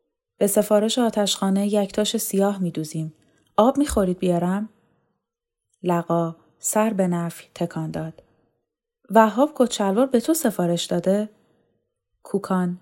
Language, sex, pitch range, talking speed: Persian, female, 165-205 Hz, 105 wpm